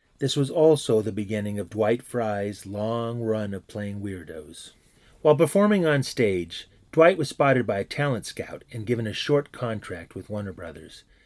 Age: 30-49